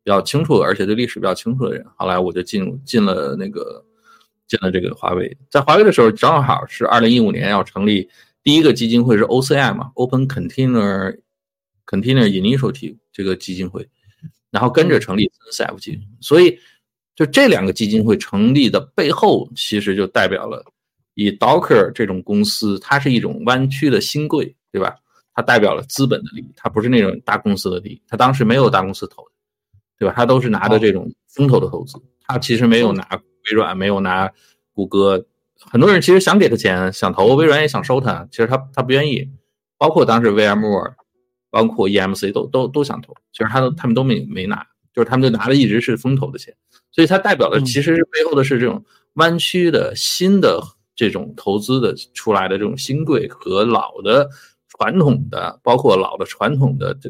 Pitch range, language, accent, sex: 100-140 Hz, Chinese, native, male